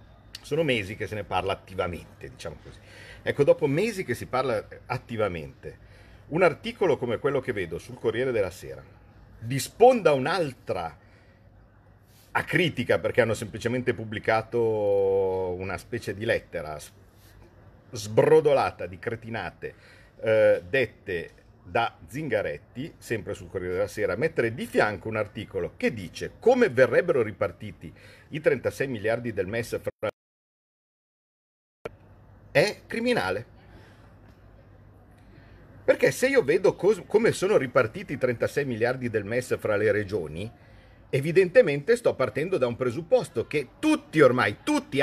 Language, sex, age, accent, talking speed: Italian, male, 50-69, native, 125 wpm